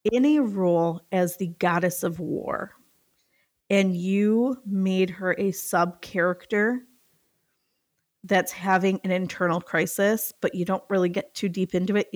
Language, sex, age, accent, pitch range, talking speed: English, female, 30-49, American, 180-215 Hz, 140 wpm